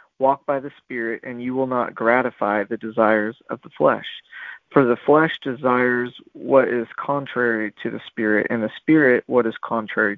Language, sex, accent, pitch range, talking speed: English, male, American, 120-145 Hz, 175 wpm